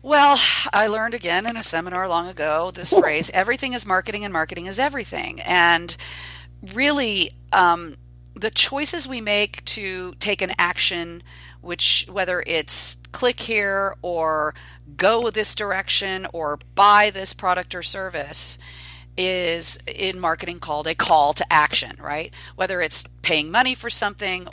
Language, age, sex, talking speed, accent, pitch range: English, 40-59, female, 145 wpm, American, 160-210 Hz